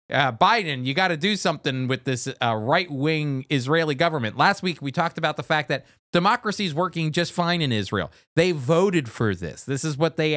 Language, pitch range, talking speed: English, 125-175 Hz, 210 wpm